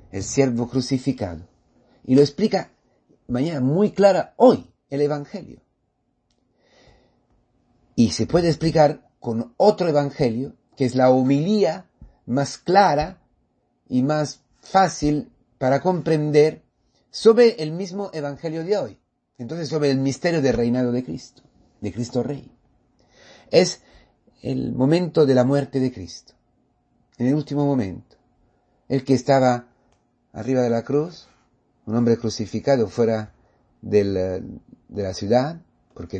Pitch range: 105-145 Hz